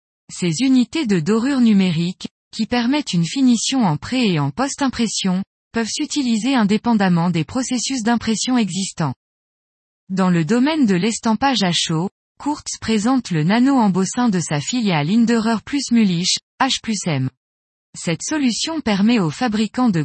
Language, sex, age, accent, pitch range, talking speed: French, female, 20-39, French, 180-245 Hz, 135 wpm